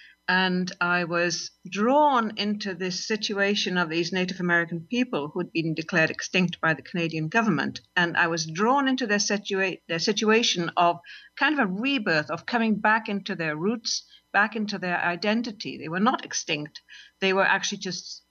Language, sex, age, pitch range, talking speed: English, female, 50-69, 170-215 Hz, 175 wpm